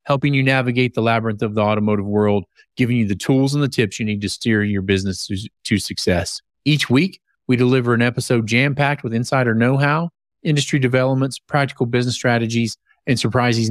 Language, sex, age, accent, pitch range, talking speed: English, male, 30-49, American, 110-140 Hz, 180 wpm